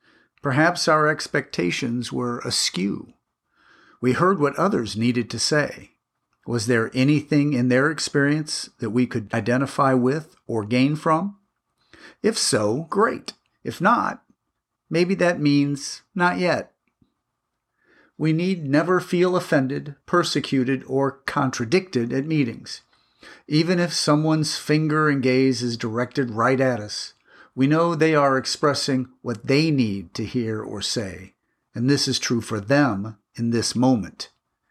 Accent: American